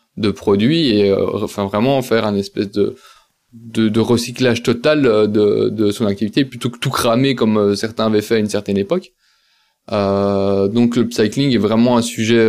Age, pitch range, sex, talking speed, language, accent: 20-39, 105-120 Hz, male, 185 wpm, French, French